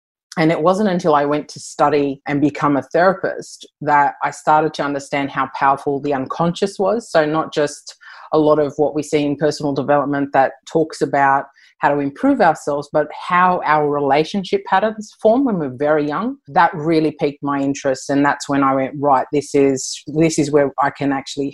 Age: 30-49